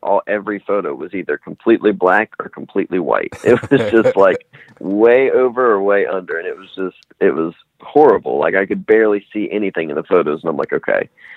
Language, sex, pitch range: English, male, 95-105 Hz